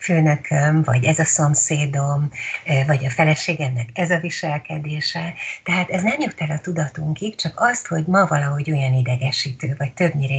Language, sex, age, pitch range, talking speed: Hungarian, female, 60-79, 140-175 Hz, 155 wpm